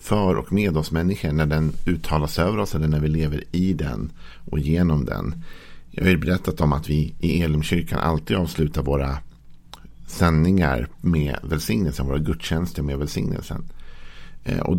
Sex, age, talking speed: male, 50-69, 155 wpm